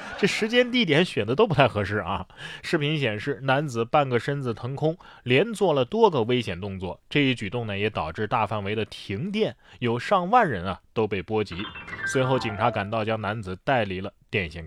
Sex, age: male, 20-39